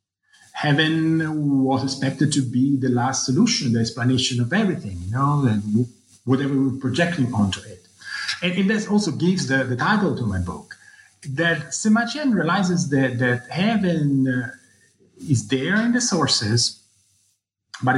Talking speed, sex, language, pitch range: 145 wpm, male, English, 110-155 Hz